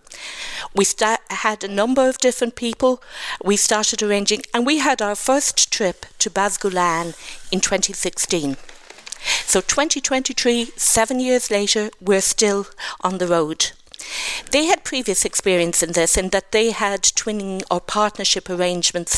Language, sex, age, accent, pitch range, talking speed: English, female, 50-69, British, 185-245 Hz, 140 wpm